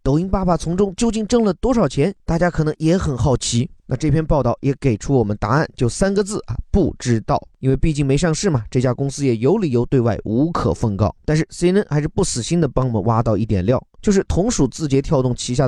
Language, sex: Chinese, male